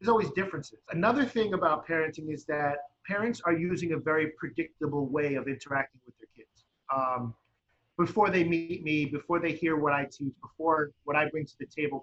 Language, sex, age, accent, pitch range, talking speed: English, male, 40-59, American, 150-185 Hz, 195 wpm